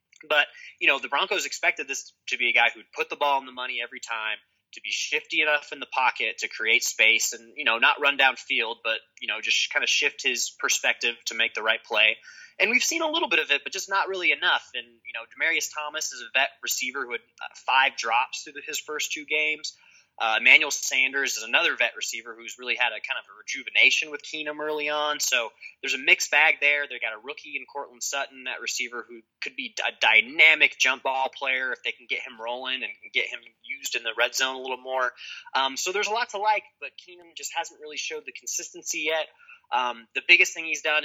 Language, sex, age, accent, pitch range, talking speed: English, male, 20-39, American, 135-180 Hz, 235 wpm